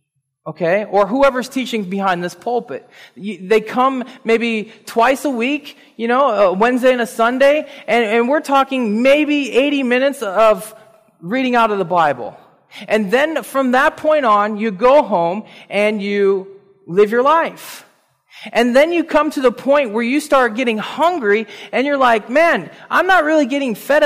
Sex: male